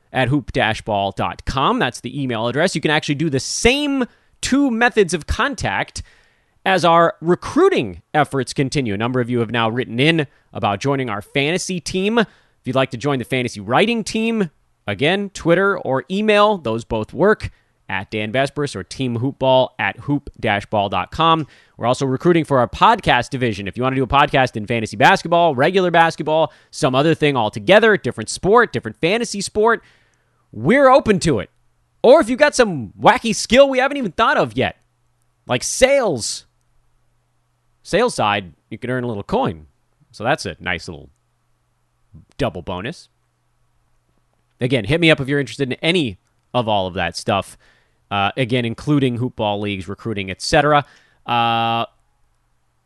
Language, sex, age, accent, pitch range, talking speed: English, male, 30-49, American, 110-165 Hz, 165 wpm